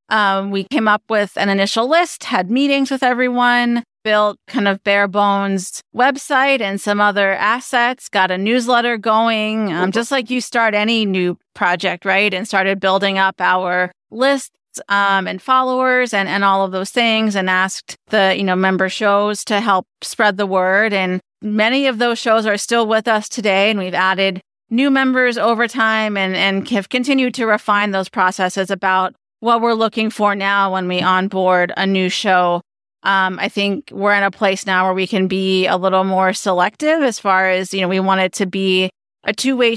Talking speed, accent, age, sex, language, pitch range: 190 wpm, American, 30-49, female, English, 190-235 Hz